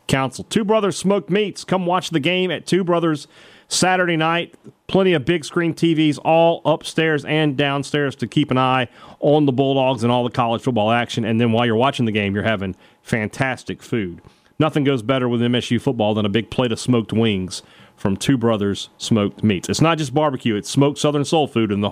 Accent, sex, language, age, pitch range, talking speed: American, male, English, 40-59, 110-150 Hz, 210 wpm